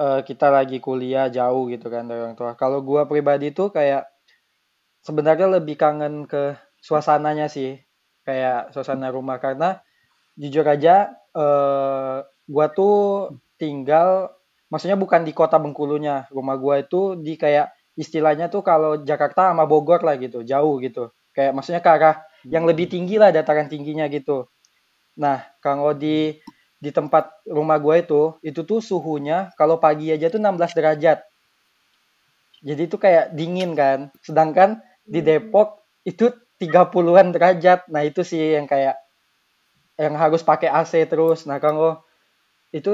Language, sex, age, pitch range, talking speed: Indonesian, male, 20-39, 135-165 Hz, 140 wpm